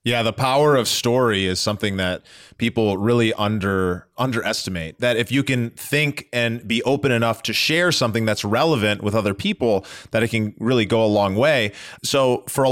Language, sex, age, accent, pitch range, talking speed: English, male, 30-49, American, 110-135 Hz, 190 wpm